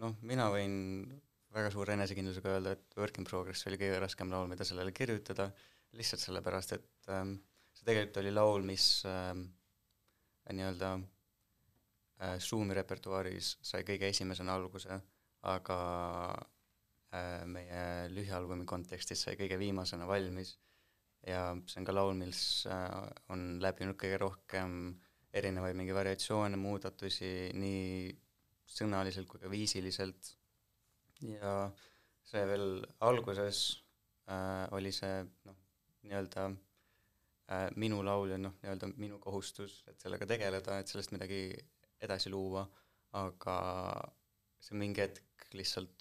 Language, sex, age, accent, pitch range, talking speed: English, male, 20-39, Finnish, 95-100 Hz, 120 wpm